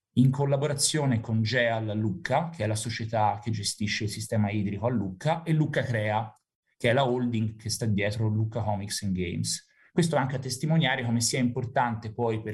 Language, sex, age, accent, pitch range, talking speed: Italian, male, 30-49, native, 110-140 Hz, 185 wpm